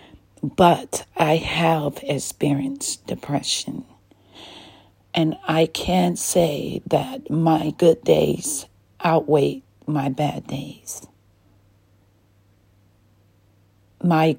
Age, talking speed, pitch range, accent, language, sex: 40-59, 75 wpm, 100-160 Hz, American, English, female